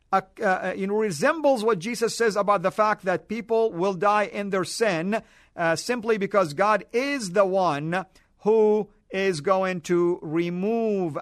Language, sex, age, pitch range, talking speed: English, male, 50-69, 190-235 Hz, 155 wpm